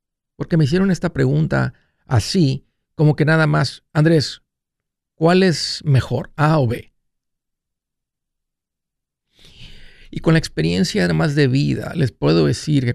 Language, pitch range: Spanish, 95-155 Hz